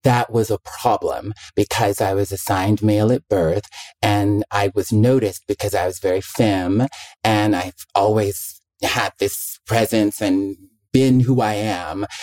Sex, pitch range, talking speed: male, 100-120 Hz, 150 wpm